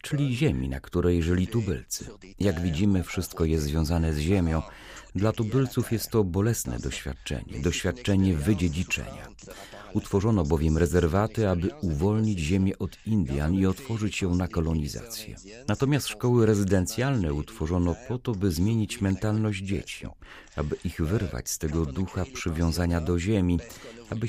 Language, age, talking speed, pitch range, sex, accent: Polish, 40-59, 135 wpm, 85-110 Hz, male, native